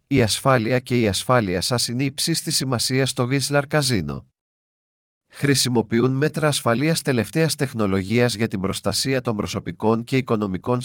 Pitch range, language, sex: 110-145 Hz, Greek, male